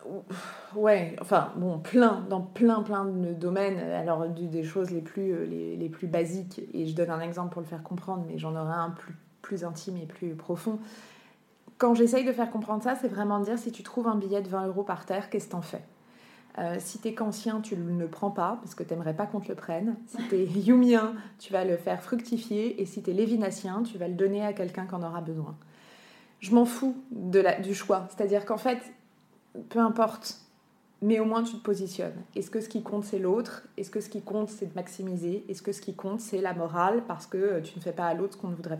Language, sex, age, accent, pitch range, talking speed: French, female, 20-39, French, 175-220 Hz, 240 wpm